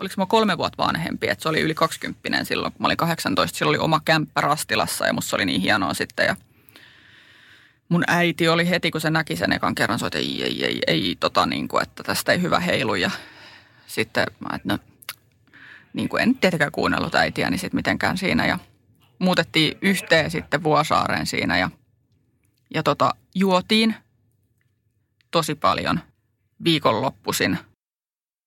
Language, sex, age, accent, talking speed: Finnish, female, 20-39, native, 165 wpm